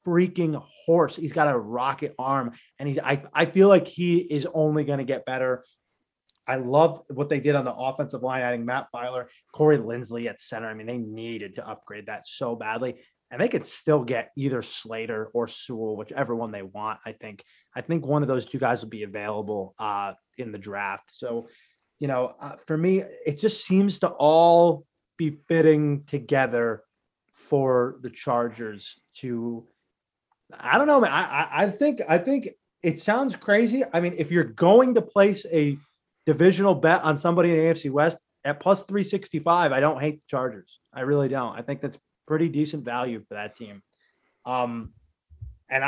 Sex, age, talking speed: male, 20-39, 185 wpm